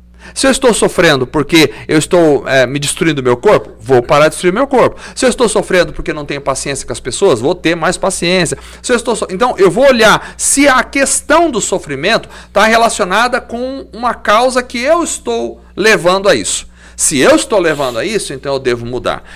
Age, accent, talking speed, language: 50-69, Brazilian, 210 wpm, Portuguese